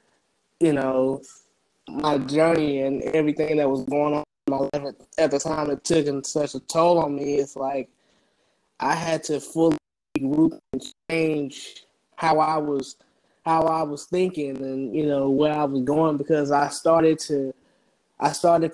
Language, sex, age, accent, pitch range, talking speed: English, male, 20-39, American, 145-165 Hz, 165 wpm